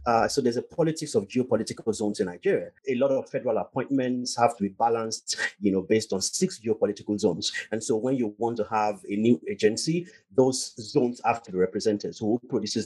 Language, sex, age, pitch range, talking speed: English, male, 30-49, 110-145 Hz, 210 wpm